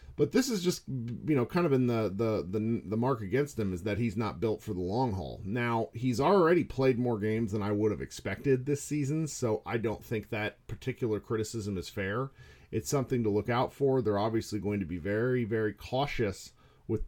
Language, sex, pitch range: English, male, 95-120 Hz